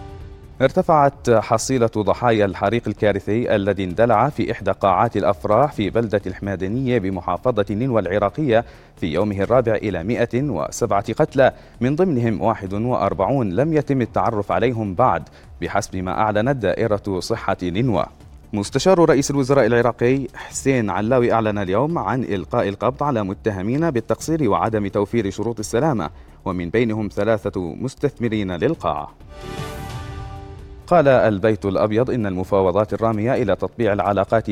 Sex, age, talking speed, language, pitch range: male, 30-49, 120 wpm, Arabic, 100-125 Hz